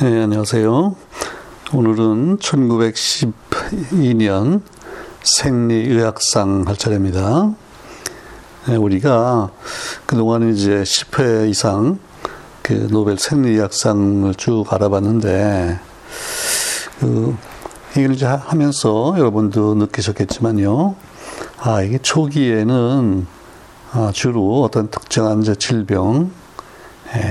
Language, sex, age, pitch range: Korean, male, 60-79, 100-130 Hz